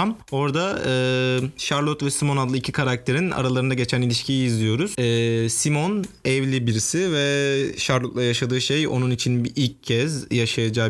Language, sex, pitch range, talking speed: Turkish, male, 120-145 Hz, 140 wpm